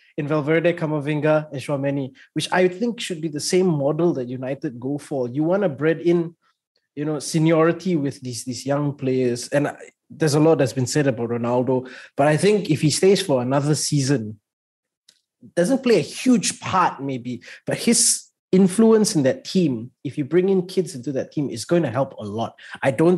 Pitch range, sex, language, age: 135-170 Hz, male, English, 20-39